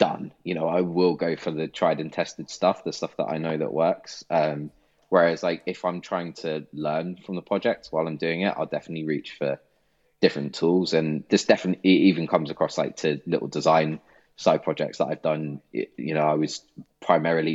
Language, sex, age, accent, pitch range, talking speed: English, male, 20-39, British, 75-85 Hz, 205 wpm